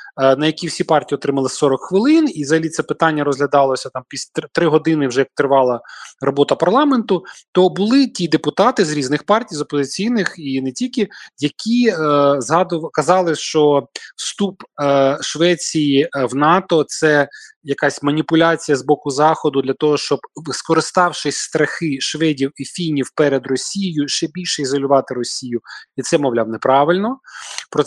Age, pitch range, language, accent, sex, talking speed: 20-39, 140-175 Hz, Ukrainian, native, male, 150 wpm